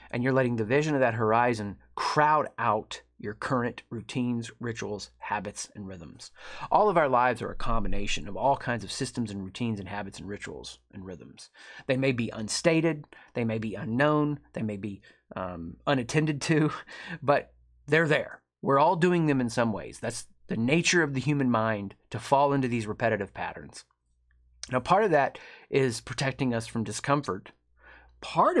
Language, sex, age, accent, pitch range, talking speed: English, male, 30-49, American, 105-130 Hz, 175 wpm